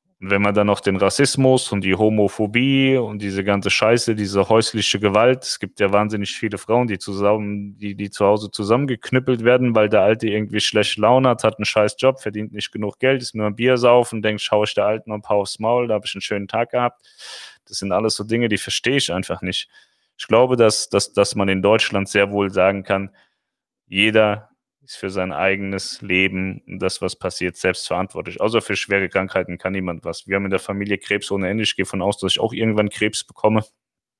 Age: 30-49